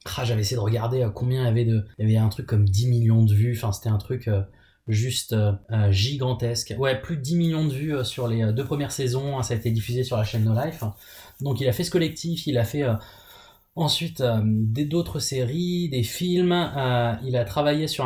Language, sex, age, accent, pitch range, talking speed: French, male, 20-39, French, 115-145 Hz, 225 wpm